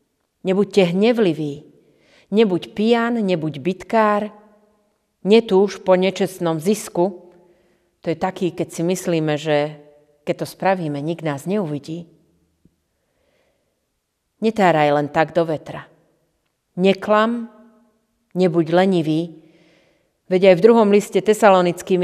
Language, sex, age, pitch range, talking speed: Slovak, female, 30-49, 160-195 Hz, 100 wpm